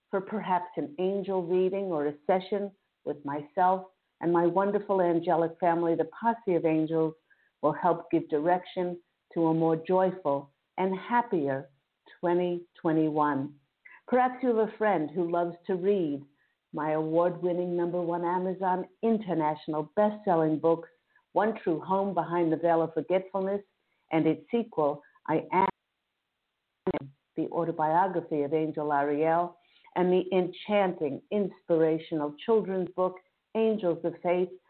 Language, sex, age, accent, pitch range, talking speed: English, female, 50-69, American, 155-190 Hz, 130 wpm